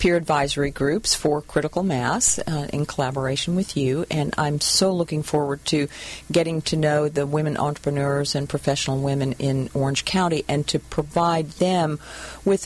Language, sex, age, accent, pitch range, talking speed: English, female, 40-59, American, 140-165 Hz, 160 wpm